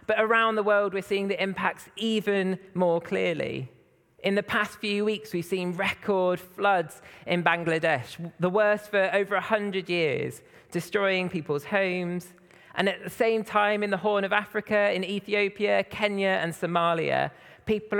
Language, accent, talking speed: English, British, 155 wpm